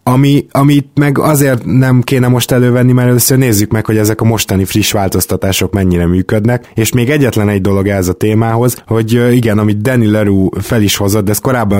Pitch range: 95-115 Hz